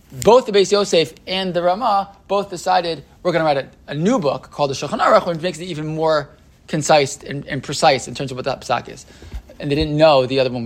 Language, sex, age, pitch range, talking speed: English, male, 20-39, 135-180 Hz, 250 wpm